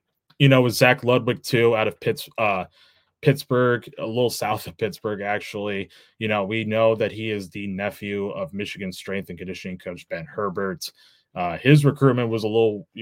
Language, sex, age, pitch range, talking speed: English, male, 20-39, 100-120 Hz, 175 wpm